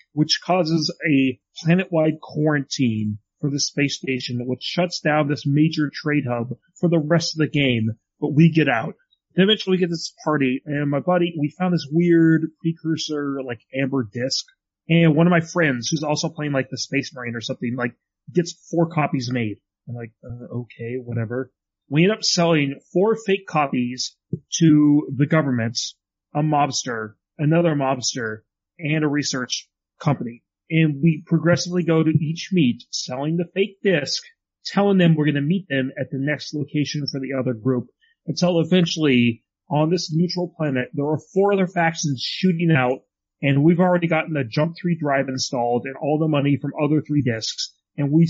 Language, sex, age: English, male, 30-49